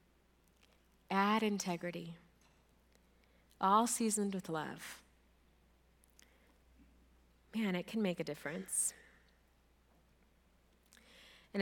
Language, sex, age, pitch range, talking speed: English, female, 30-49, 150-195 Hz, 65 wpm